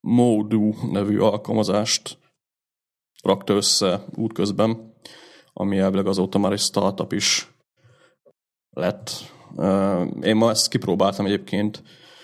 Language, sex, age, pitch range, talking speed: Hungarian, male, 30-49, 95-110 Hz, 95 wpm